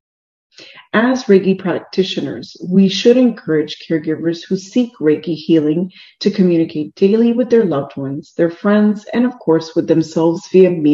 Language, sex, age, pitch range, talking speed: English, female, 40-59, 160-205 Hz, 145 wpm